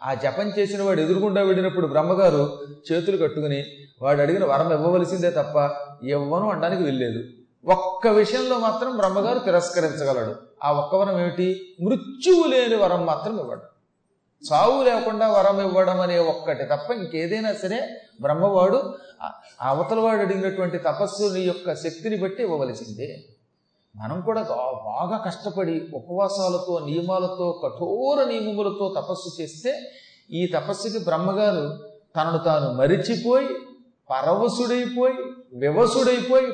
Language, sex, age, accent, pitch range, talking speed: Telugu, male, 30-49, native, 160-220 Hz, 110 wpm